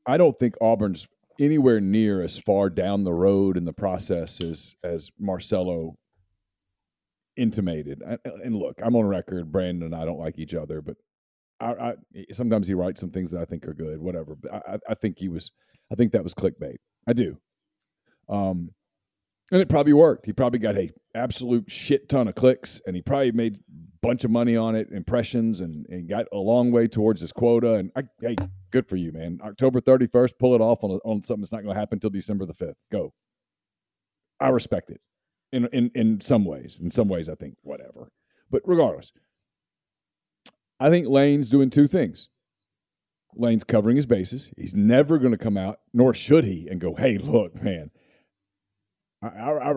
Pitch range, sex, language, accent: 95-125 Hz, male, English, American